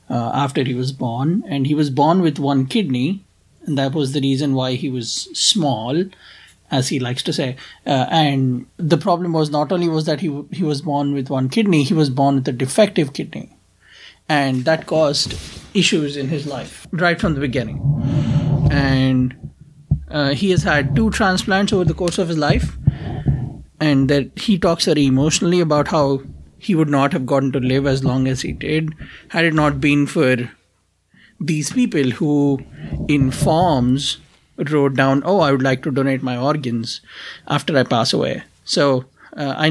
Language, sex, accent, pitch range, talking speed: English, male, Indian, 135-165 Hz, 180 wpm